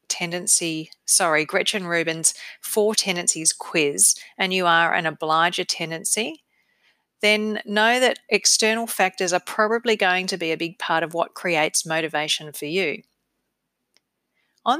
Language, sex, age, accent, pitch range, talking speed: English, female, 40-59, Australian, 165-210 Hz, 135 wpm